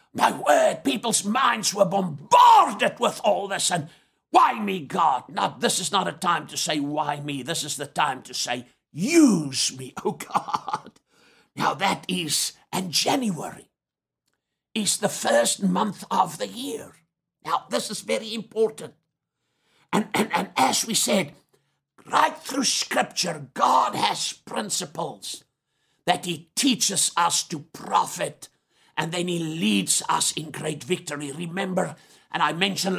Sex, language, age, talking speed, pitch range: male, English, 60-79, 145 wpm, 160-205 Hz